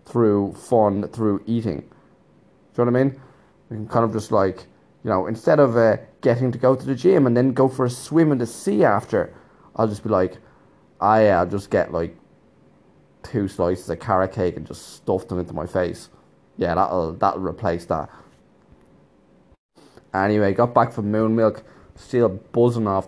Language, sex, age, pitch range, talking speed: English, male, 20-39, 90-115 Hz, 185 wpm